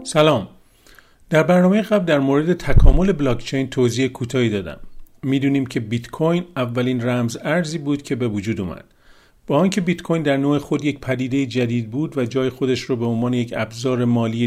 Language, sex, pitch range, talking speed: Persian, male, 115-145 Hz, 185 wpm